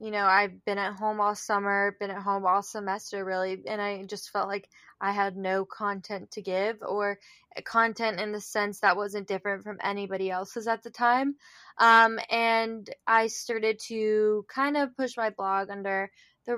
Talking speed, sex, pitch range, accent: 185 wpm, female, 200-230 Hz, American